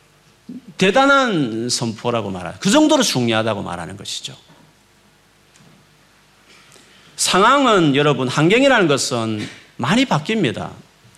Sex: male